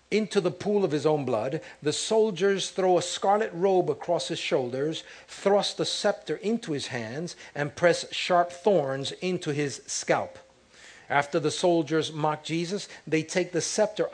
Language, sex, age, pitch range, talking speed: English, male, 50-69, 150-195 Hz, 160 wpm